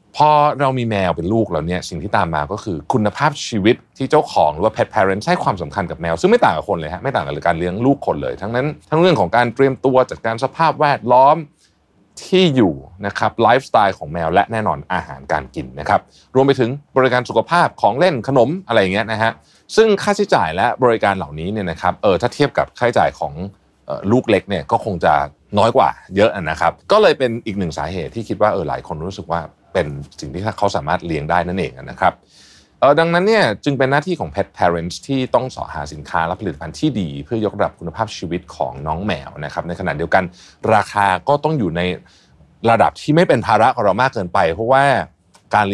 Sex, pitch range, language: male, 85-135 Hz, Thai